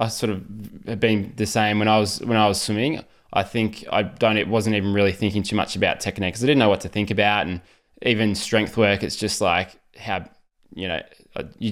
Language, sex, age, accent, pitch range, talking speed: English, male, 20-39, Australian, 95-110 Hz, 235 wpm